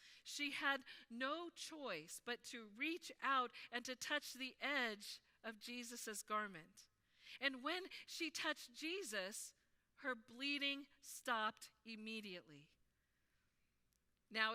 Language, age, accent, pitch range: English, 50-69, American, 205-270 Hz